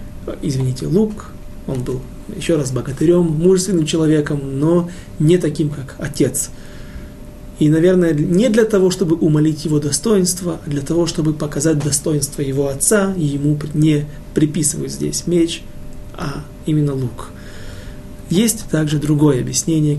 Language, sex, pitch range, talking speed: Russian, male, 140-180 Hz, 130 wpm